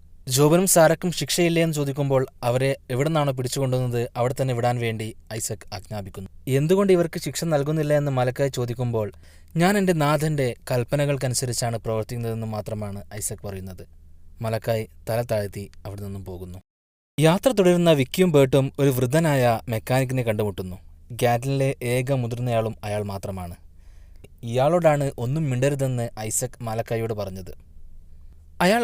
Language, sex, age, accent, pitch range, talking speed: Malayalam, male, 20-39, native, 105-145 Hz, 110 wpm